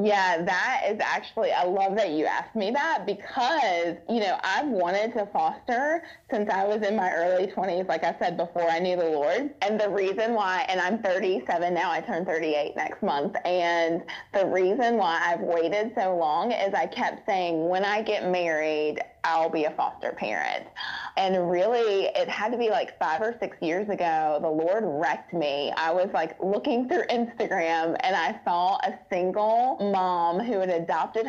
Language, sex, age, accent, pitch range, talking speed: English, female, 20-39, American, 170-210 Hz, 180 wpm